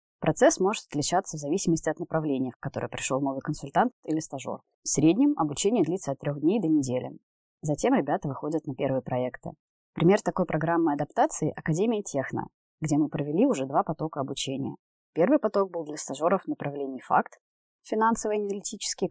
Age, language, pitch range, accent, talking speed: 20-39, Russian, 145-180 Hz, native, 165 wpm